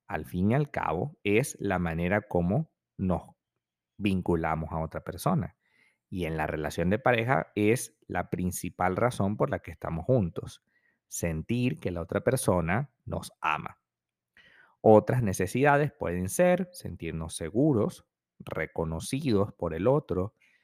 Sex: male